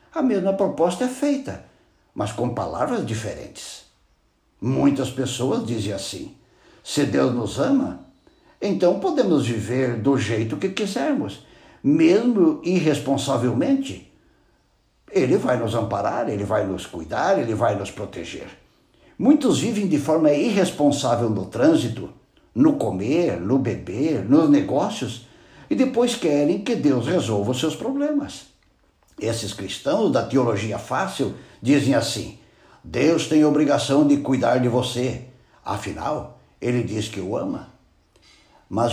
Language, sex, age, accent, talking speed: Portuguese, male, 60-79, Brazilian, 125 wpm